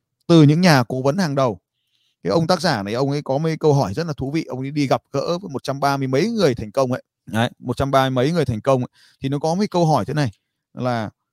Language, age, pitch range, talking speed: Vietnamese, 20-39, 125-175 Hz, 270 wpm